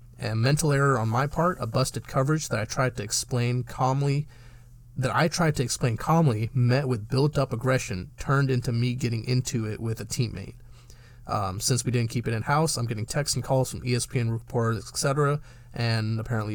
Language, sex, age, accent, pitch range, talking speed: English, male, 30-49, American, 115-130 Hz, 190 wpm